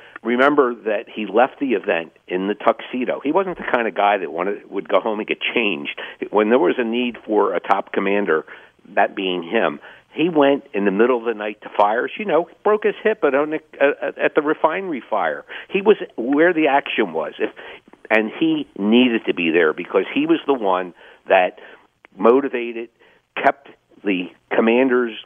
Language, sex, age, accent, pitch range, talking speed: English, male, 50-69, American, 105-140 Hz, 180 wpm